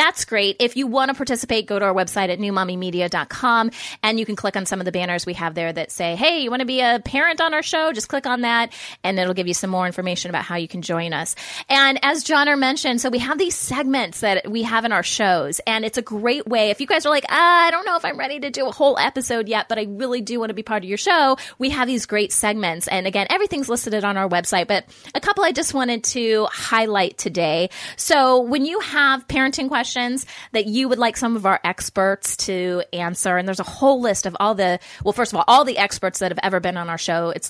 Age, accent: 20-39, American